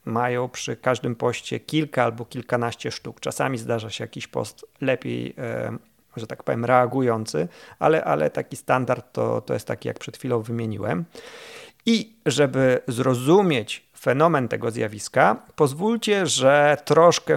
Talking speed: 135 wpm